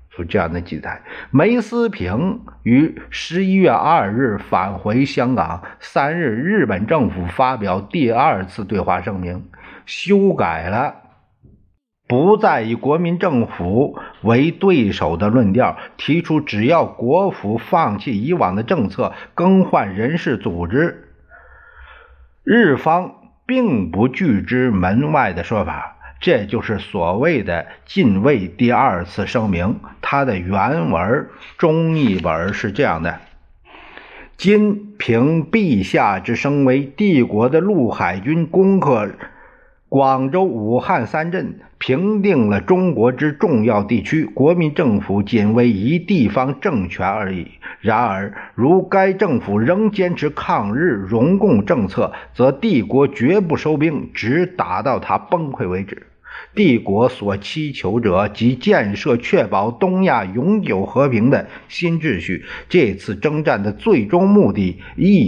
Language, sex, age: Chinese, male, 50-69